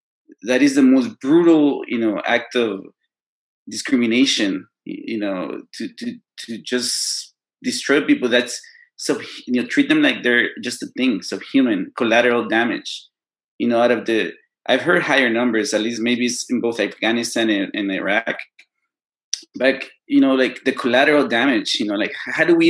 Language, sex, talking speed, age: English, male, 170 wpm, 20-39